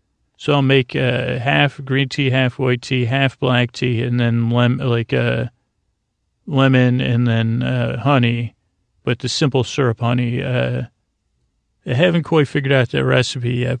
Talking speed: 160 wpm